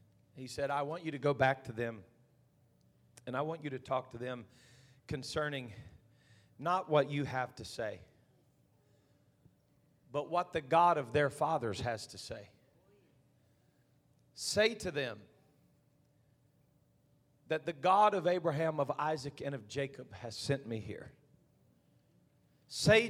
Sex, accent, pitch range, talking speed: male, American, 130-160 Hz, 140 wpm